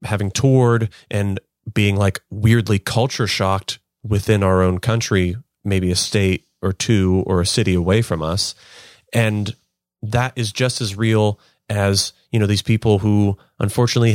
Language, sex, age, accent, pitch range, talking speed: English, male, 30-49, American, 95-125 Hz, 155 wpm